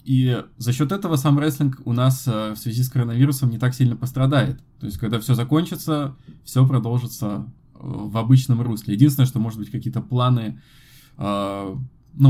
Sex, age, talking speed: male, 20-39, 160 wpm